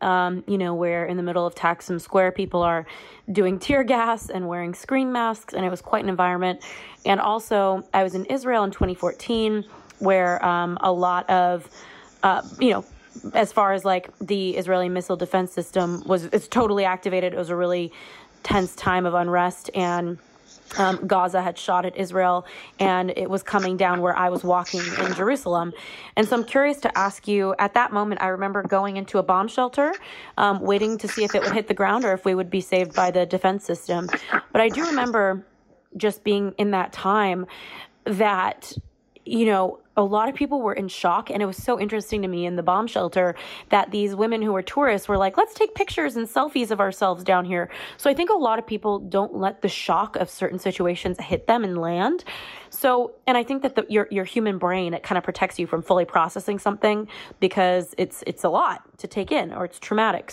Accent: American